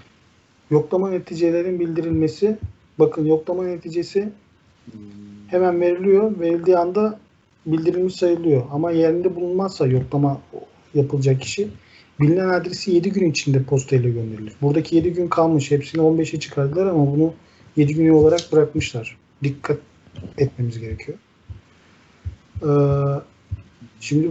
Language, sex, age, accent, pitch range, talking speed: Turkish, male, 40-59, native, 130-180 Hz, 105 wpm